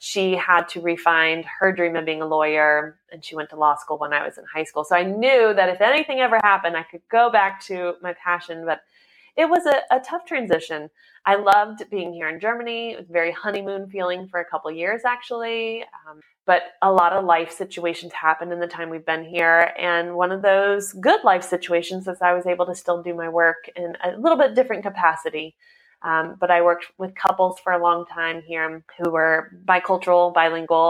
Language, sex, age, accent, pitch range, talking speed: English, female, 20-39, American, 165-195 Hz, 220 wpm